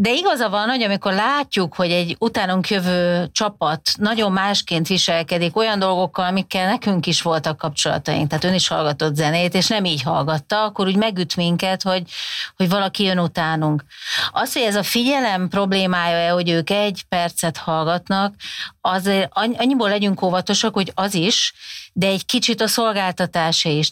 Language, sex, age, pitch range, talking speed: Hungarian, female, 40-59, 165-200 Hz, 160 wpm